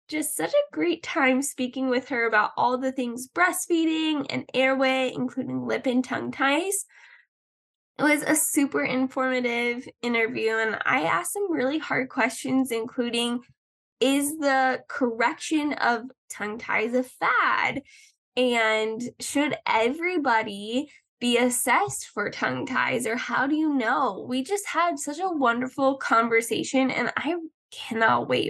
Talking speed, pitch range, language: 140 wpm, 245-295 Hz, English